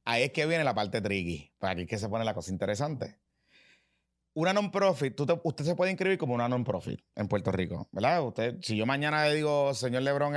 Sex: male